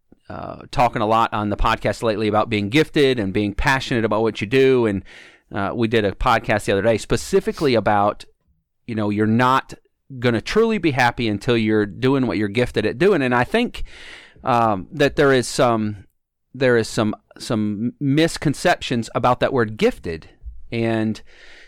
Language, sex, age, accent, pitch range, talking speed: English, male, 30-49, American, 105-135 Hz, 175 wpm